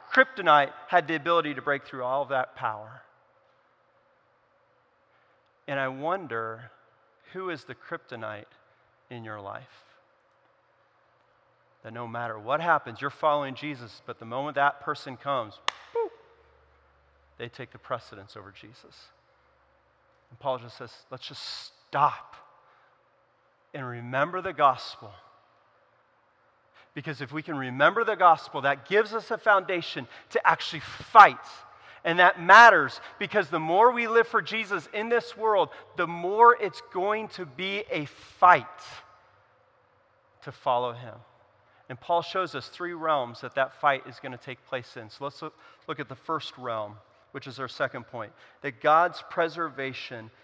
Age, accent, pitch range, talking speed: 40-59, American, 125-175 Hz, 145 wpm